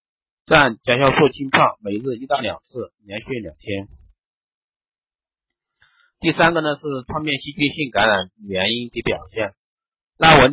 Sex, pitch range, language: male, 105-145 Hz, Chinese